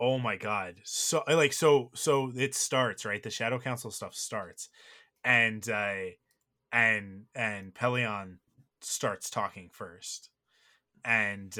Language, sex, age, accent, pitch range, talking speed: English, male, 20-39, American, 105-130 Hz, 125 wpm